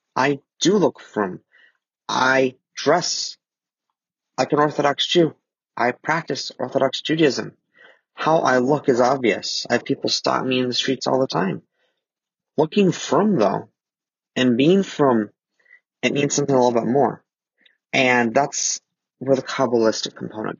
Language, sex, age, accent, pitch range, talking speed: English, male, 30-49, American, 120-140 Hz, 145 wpm